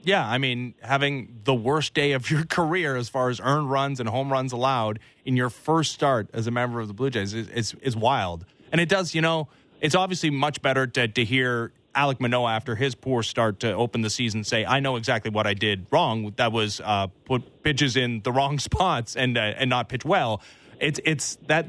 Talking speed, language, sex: 225 wpm, English, male